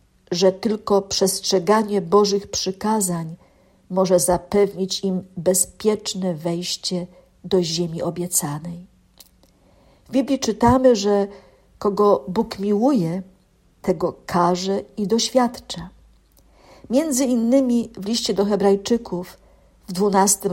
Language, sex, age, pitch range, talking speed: Polish, female, 50-69, 180-225 Hz, 95 wpm